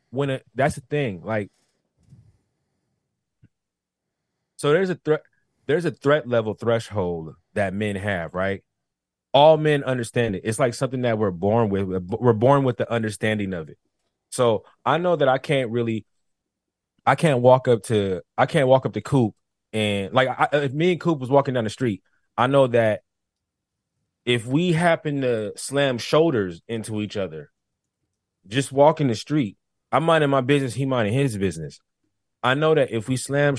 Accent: American